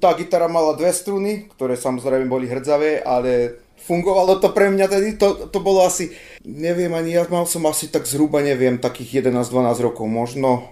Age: 30-49